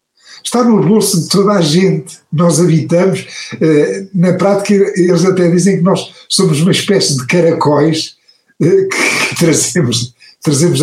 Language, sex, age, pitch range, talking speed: Portuguese, male, 60-79, 145-205 Hz, 140 wpm